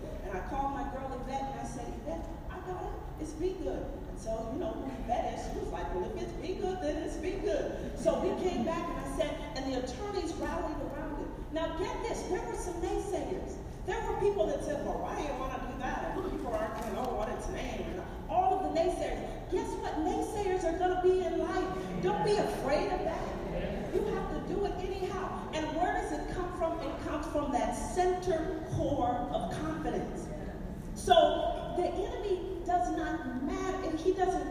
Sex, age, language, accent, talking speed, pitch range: female, 40-59, English, American, 215 wpm, 320-370 Hz